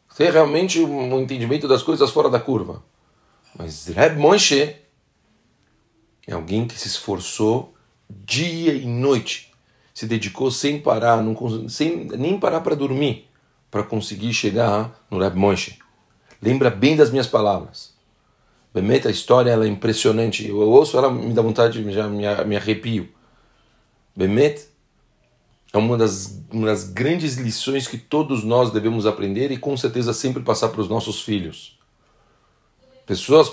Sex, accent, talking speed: male, Brazilian, 140 wpm